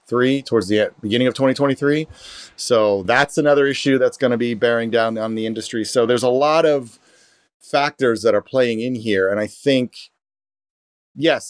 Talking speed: 175 wpm